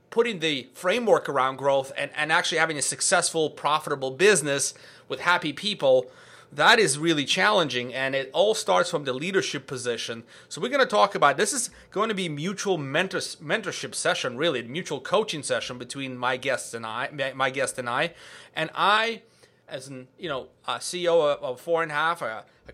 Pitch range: 135-195 Hz